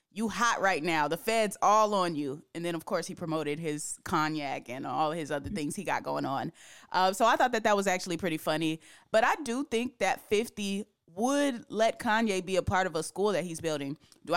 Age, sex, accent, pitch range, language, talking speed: 20-39, female, American, 160-200 Hz, English, 230 wpm